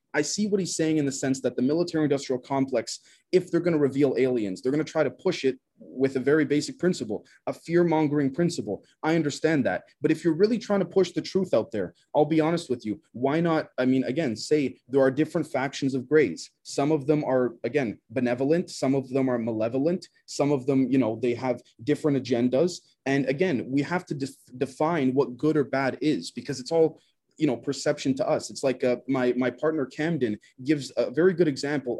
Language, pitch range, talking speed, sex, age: English, 130-165 Hz, 220 wpm, male, 20-39